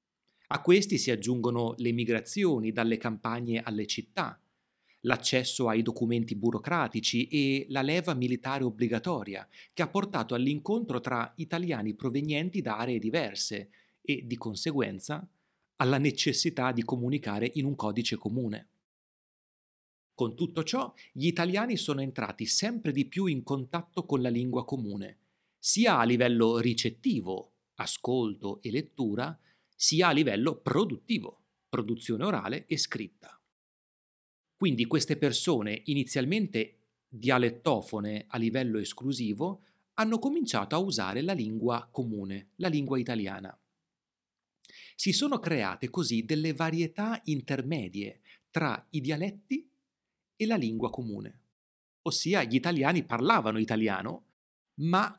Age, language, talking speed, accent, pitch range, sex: 30-49, Italian, 120 wpm, native, 115-170 Hz, male